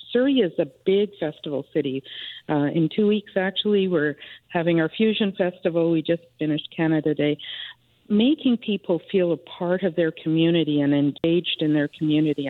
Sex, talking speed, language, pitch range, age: female, 165 wpm, English, 155-180 Hz, 50-69